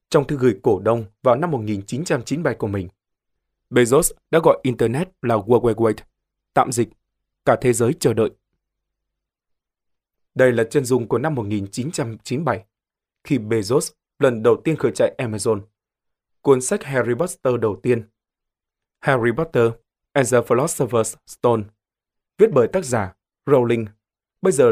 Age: 20-39